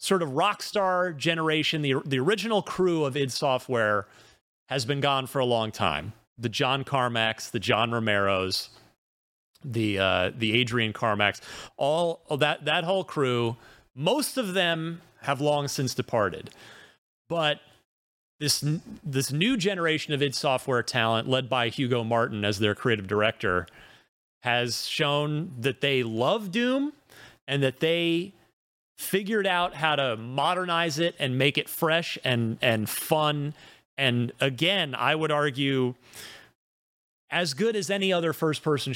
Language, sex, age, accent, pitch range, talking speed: English, male, 30-49, American, 115-160 Hz, 140 wpm